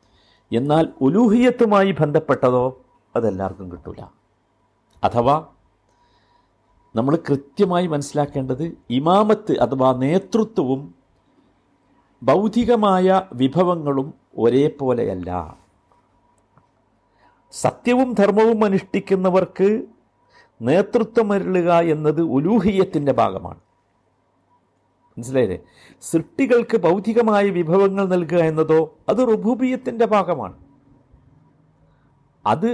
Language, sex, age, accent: Malayalam, male, 50-69, native